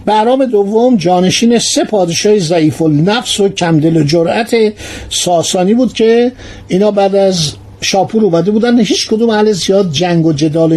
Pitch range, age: 170-235 Hz, 60-79